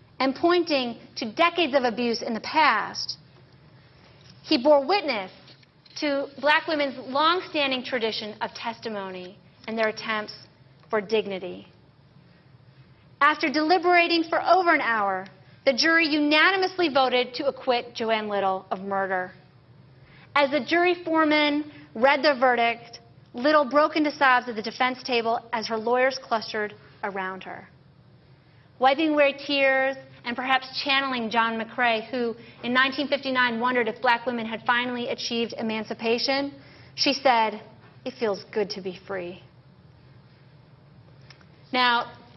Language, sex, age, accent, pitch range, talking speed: English, female, 30-49, American, 215-290 Hz, 125 wpm